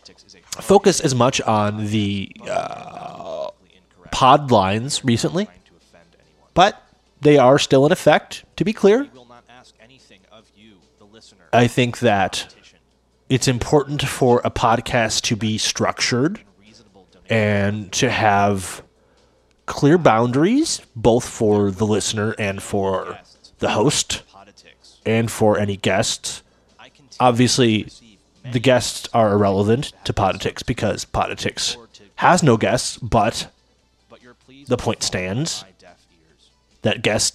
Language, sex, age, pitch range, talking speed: English, male, 30-49, 100-135 Hz, 105 wpm